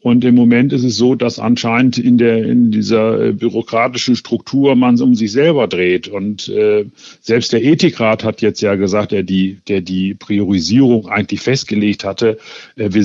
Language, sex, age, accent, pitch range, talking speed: German, male, 50-69, German, 110-130 Hz, 180 wpm